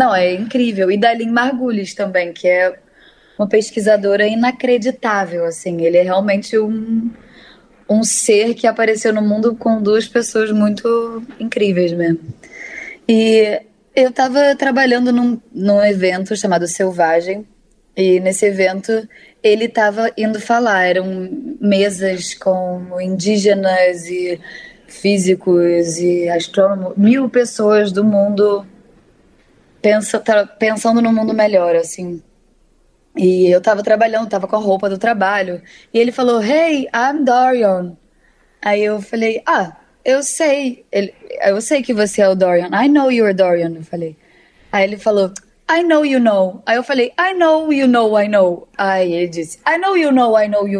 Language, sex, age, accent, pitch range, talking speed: Portuguese, female, 20-39, Brazilian, 190-235 Hz, 150 wpm